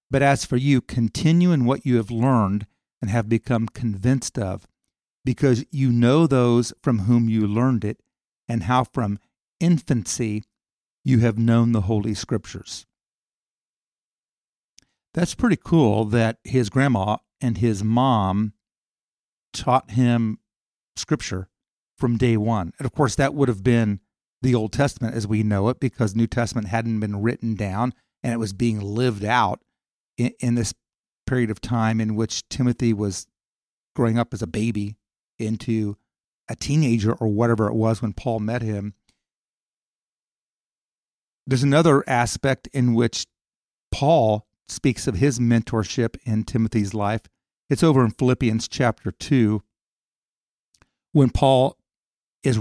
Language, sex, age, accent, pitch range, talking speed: English, male, 50-69, American, 110-130 Hz, 140 wpm